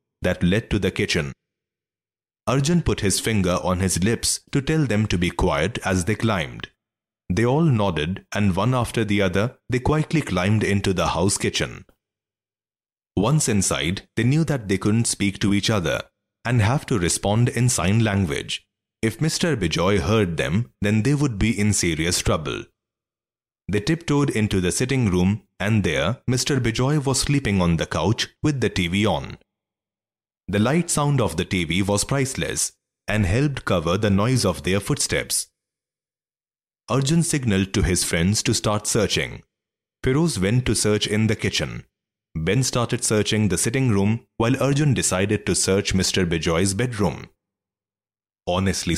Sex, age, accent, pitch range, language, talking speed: male, 30-49, Indian, 95-125 Hz, English, 160 wpm